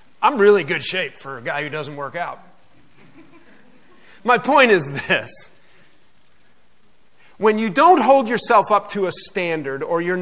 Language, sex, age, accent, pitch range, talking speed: English, male, 40-59, American, 180-235 Hz, 155 wpm